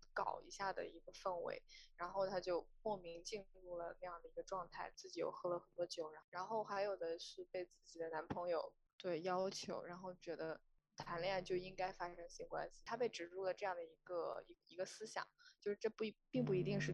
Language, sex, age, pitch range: Chinese, female, 20-39, 175-220 Hz